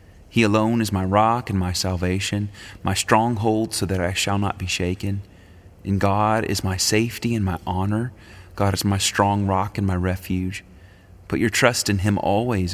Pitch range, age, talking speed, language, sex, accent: 90-100 Hz, 30-49, 185 wpm, English, male, American